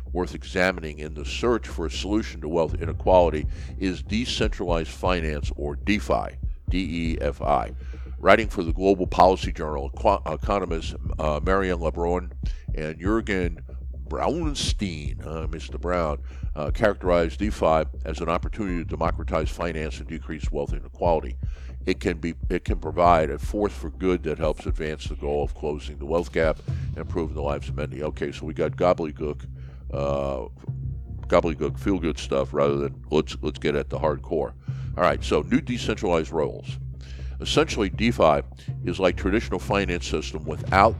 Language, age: English, 50-69